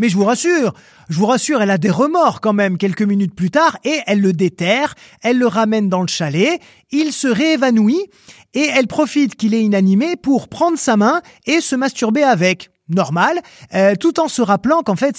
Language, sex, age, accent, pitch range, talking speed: French, male, 30-49, French, 190-260 Hz, 205 wpm